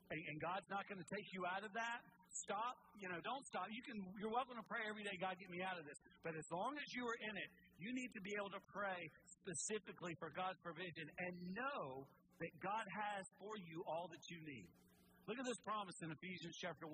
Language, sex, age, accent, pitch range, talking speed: English, male, 50-69, American, 155-205 Hz, 235 wpm